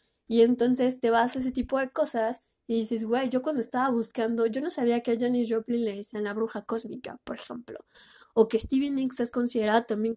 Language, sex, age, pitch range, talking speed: Spanish, female, 10-29, 225-250 Hz, 220 wpm